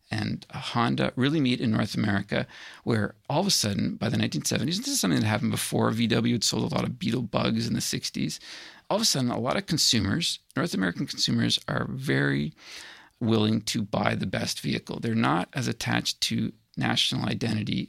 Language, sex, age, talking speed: English, male, 50-69, 195 wpm